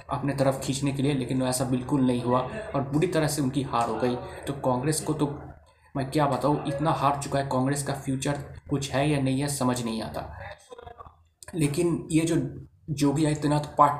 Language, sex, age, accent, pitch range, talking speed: Hindi, male, 20-39, native, 130-145 Hz, 210 wpm